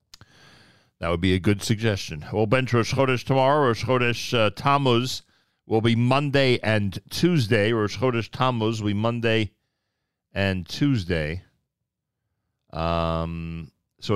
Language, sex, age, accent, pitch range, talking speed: English, male, 40-59, American, 95-130 Hz, 120 wpm